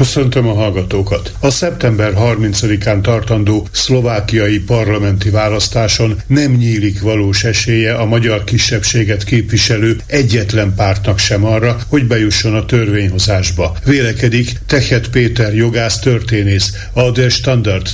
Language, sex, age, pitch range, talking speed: Hungarian, male, 60-79, 105-120 Hz, 115 wpm